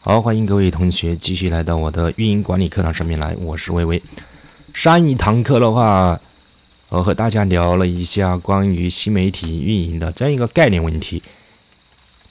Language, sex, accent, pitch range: Chinese, male, native, 85-105 Hz